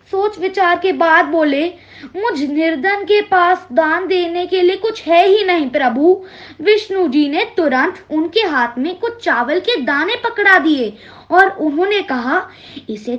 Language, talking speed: English, 155 wpm